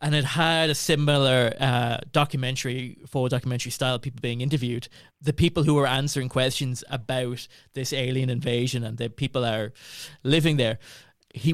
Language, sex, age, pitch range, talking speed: English, male, 20-39, 120-140 Hz, 155 wpm